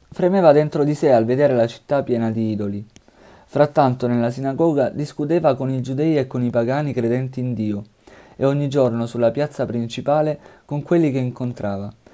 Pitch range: 120-150 Hz